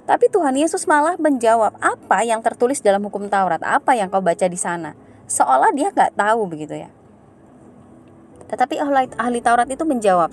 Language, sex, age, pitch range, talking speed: Indonesian, female, 20-39, 185-245 Hz, 170 wpm